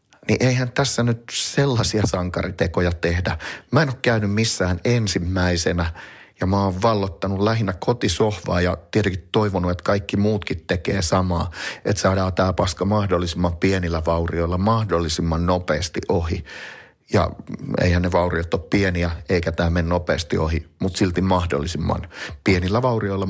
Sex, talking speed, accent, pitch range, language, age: male, 135 wpm, native, 85-105 Hz, Finnish, 30-49